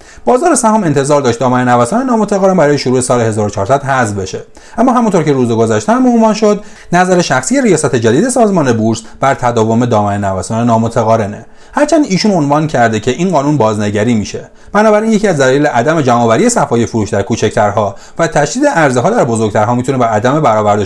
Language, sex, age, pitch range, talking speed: Persian, male, 30-49, 110-170 Hz, 170 wpm